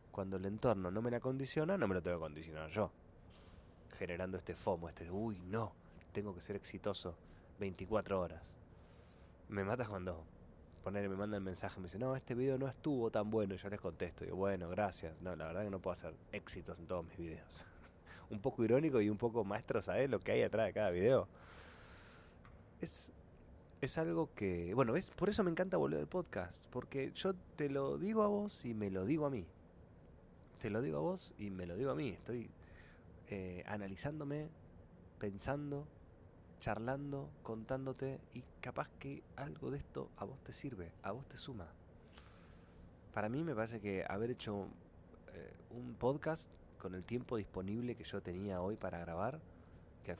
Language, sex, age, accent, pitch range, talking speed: Spanish, male, 20-39, Argentinian, 90-120 Hz, 190 wpm